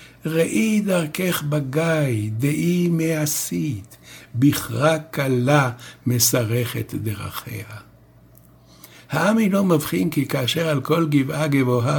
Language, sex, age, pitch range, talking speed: Hebrew, male, 60-79, 120-155 Hz, 90 wpm